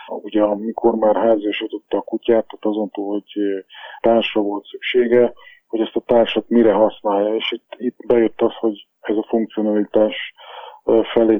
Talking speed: 140 wpm